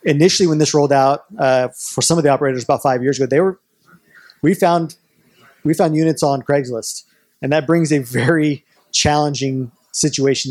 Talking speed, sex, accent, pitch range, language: 175 wpm, male, American, 130-150 Hz, English